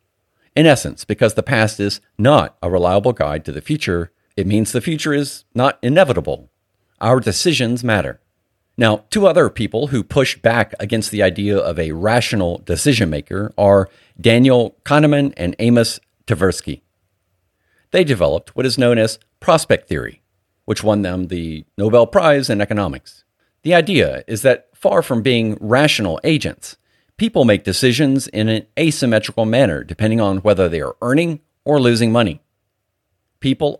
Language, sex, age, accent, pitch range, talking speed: English, male, 50-69, American, 95-125 Hz, 150 wpm